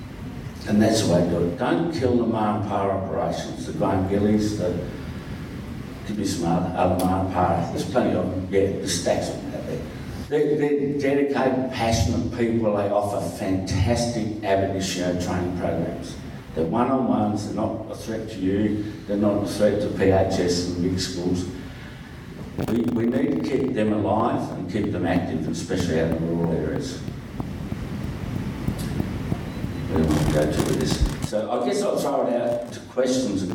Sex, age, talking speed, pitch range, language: male, 60-79, 170 wpm, 90-110 Hz, English